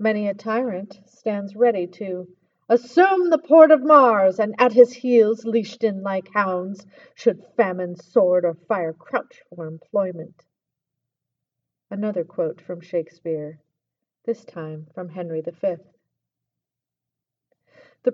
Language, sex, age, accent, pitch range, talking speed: English, female, 40-59, American, 170-230 Hz, 120 wpm